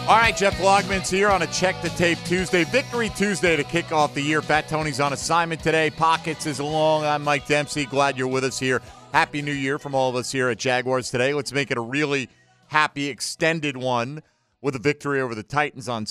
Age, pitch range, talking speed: 50-69, 115-155 Hz, 225 wpm